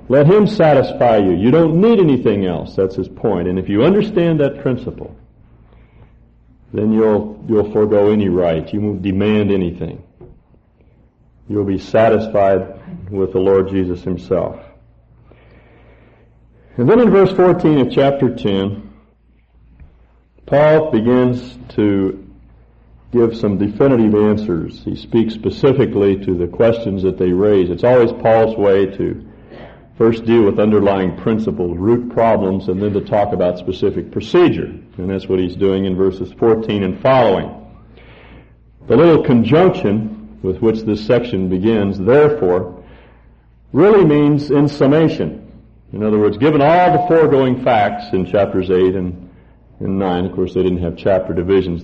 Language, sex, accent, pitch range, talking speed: English, male, American, 95-120 Hz, 140 wpm